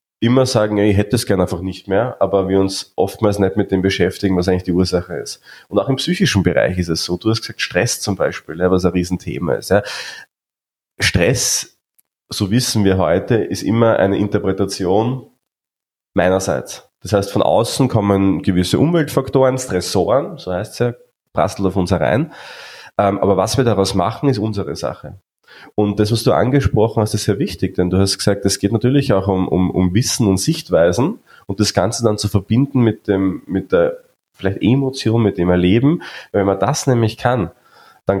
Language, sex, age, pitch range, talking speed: German, male, 30-49, 95-115 Hz, 185 wpm